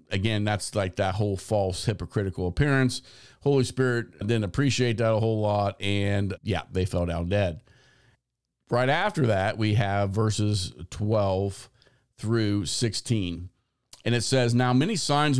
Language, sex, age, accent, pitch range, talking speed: English, male, 50-69, American, 100-125 Hz, 145 wpm